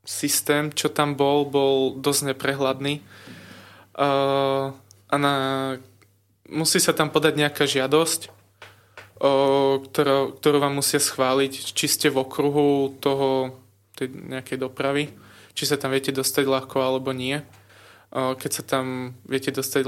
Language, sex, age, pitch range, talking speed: Slovak, male, 20-39, 125-145 Hz, 135 wpm